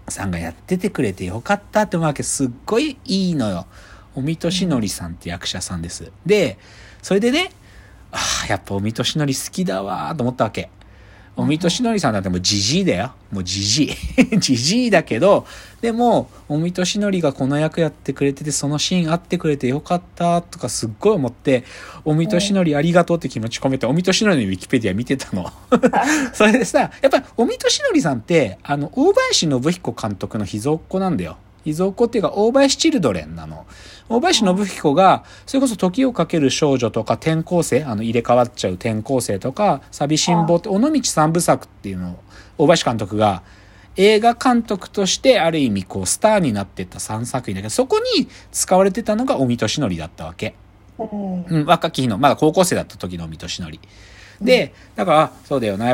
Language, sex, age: Japanese, male, 40-59